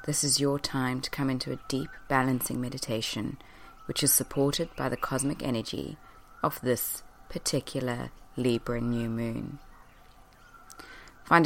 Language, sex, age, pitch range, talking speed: English, female, 20-39, 125-150 Hz, 130 wpm